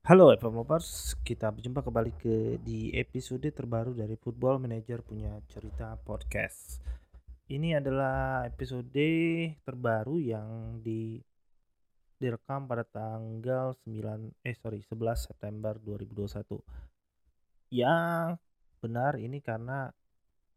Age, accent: 30-49, native